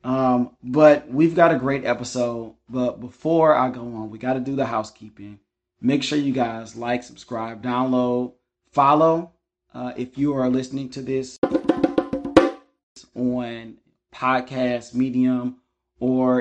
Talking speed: 135 wpm